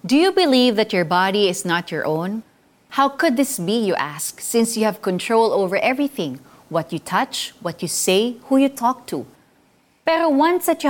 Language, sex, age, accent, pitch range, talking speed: Filipino, female, 30-49, native, 180-275 Hz, 200 wpm